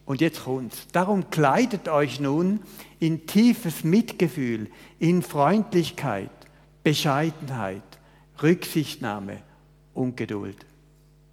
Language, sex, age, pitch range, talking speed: German, male, 60-79, 130-160 Hz, 85 wpm